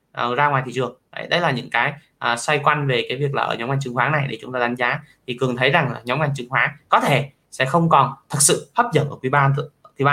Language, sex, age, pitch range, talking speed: Vietnamese, male, 20-39, 125-150 Hz, 315 wpm